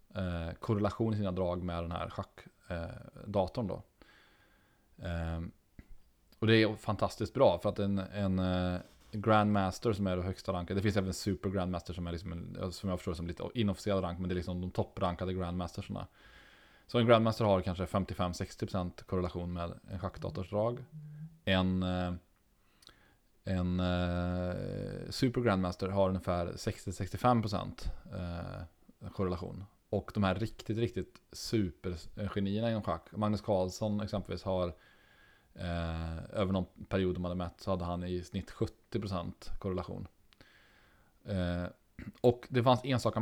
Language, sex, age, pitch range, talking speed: Swedish, male, 20-39, 90-105 Hz, 135 wpm